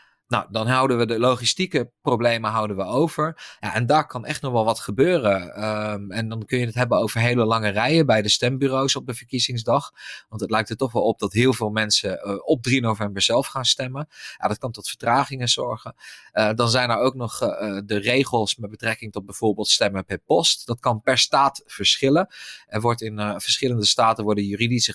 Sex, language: male, Dutch